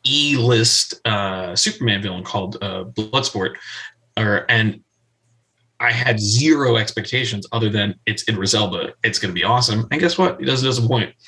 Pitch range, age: 105-125 Hz, 20-39